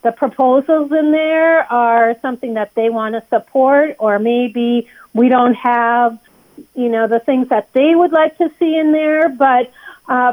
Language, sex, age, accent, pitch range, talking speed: English, female, 40-59, American, 235-285 Hz, 175 wpm